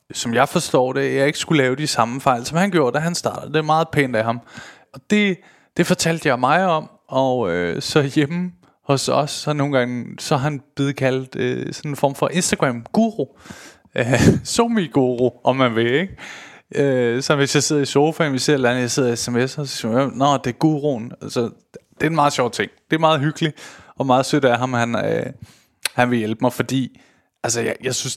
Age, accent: 20-39, native